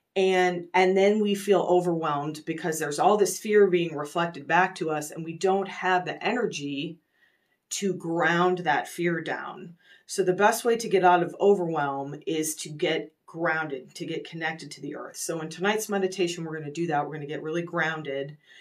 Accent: American